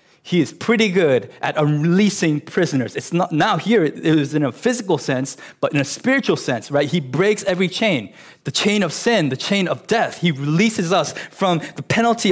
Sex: male